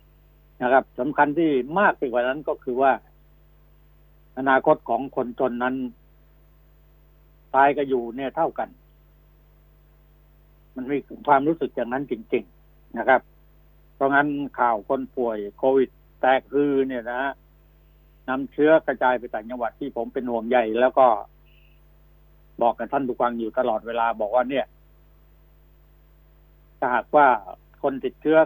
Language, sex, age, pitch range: Thai, male, 60-79, 125-145 Hz